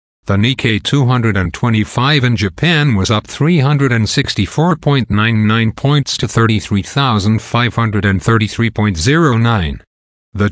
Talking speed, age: 70 wpm, 50-69